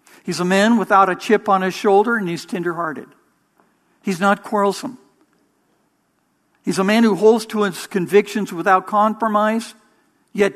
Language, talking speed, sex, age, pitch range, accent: English, 150 wpm, male, 60-79, 170-215 Hz, American